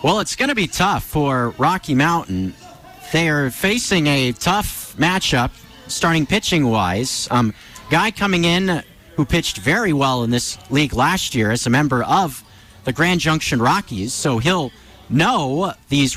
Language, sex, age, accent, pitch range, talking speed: English, male, 40-59, American, 125-170 Hz, 155 wpm